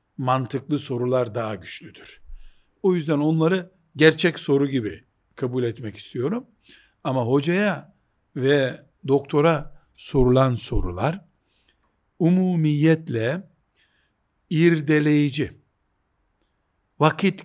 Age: 60-79